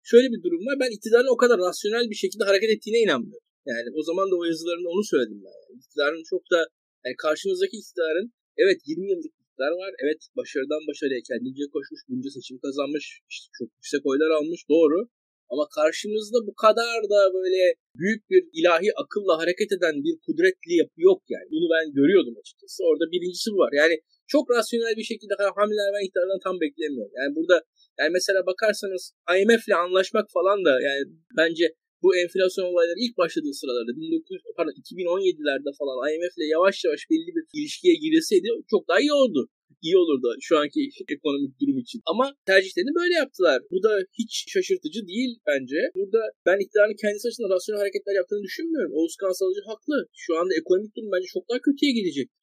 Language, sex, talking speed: Turkish, male, 175 wpm